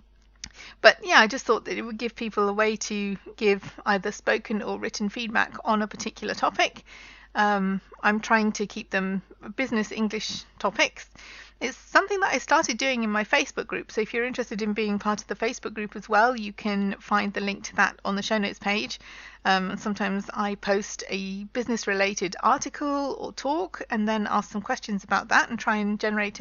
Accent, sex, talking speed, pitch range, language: British, female, 200 wpm, 205-235 Hz, English